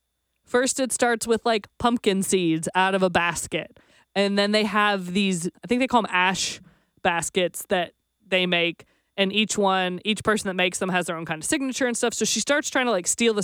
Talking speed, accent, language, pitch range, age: 225 wpm, American, English, 180-225 Hz, 20-39